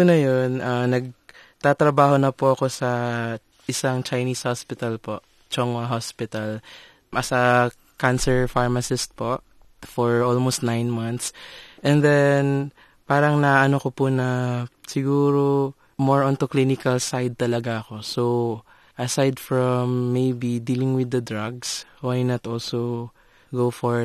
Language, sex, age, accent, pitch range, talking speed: Filipino, male, 20-39, native, 115-135 Hz, 125 wpm